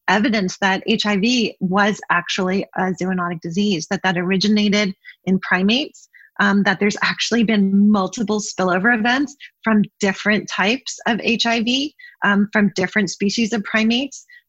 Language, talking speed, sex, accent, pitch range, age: English, 135 wpm, female, American, 185-215 Hz, 30-49